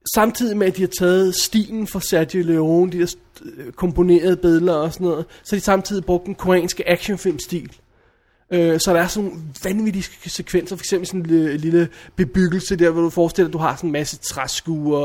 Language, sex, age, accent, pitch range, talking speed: Danish, male, 20-39, native, 170-195 Hz, 200 wpm